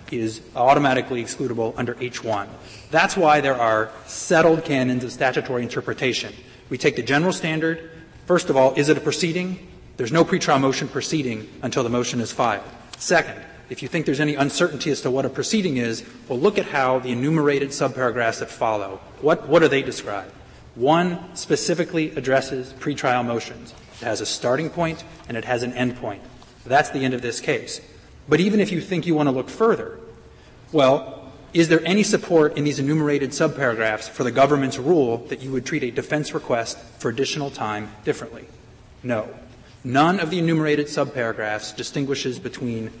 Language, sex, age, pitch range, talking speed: English, male, 30-49, 120-160 Hz, 175 wpm